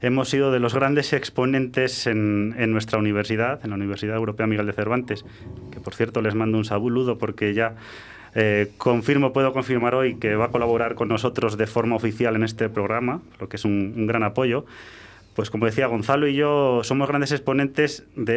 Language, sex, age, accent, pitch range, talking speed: Spanish, male, 20-39, Spanish, 105-125 Hz, 195 wpm